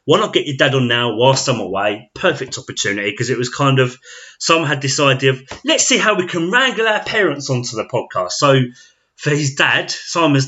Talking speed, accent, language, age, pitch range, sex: 220 wpm, British, English, 20-39, 115-140 Hz, male